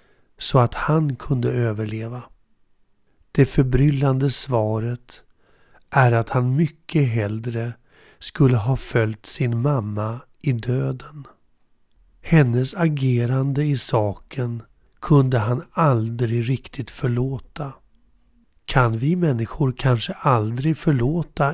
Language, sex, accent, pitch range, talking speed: Swedish, male, native, 120-145 Hz, 100 wpm